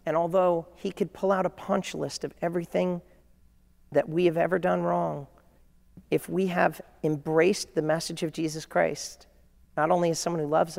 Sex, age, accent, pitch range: male, 40-59, American, 145-170 Hz